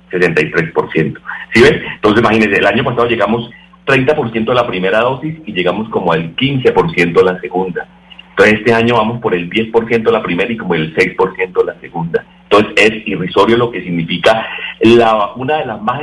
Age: 40-59